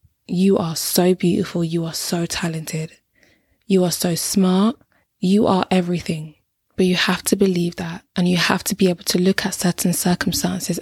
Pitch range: 170-195 Hz